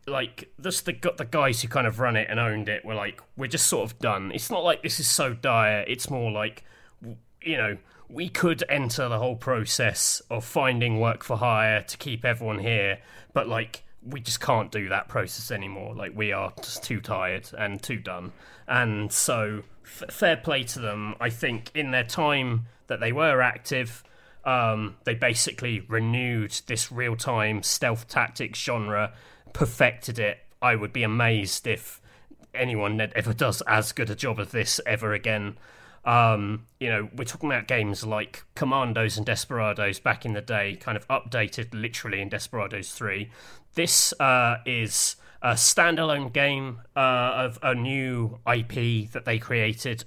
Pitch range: 105-125 Hz